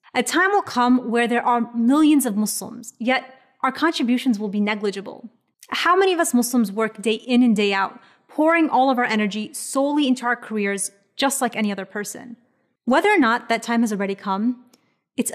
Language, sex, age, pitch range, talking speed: English, female, 30-49, 220-260 Hz, 195 wpm